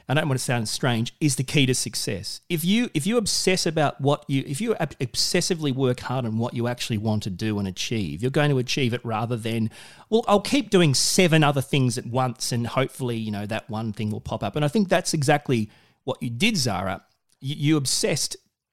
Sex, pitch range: male, 115-160 Hz